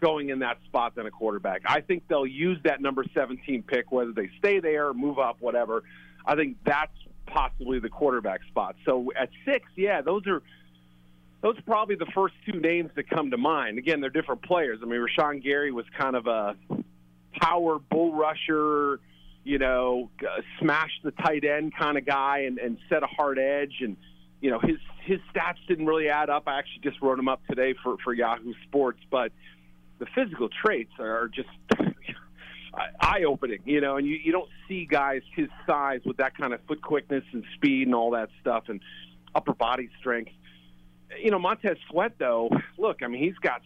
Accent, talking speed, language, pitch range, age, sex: American, 195 wpm, English, 120-165 Hz, 40-59, male